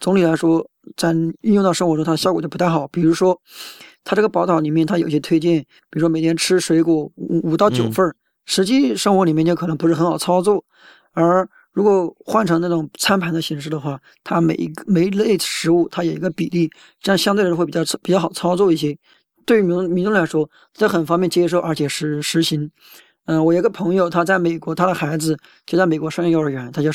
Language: Chinese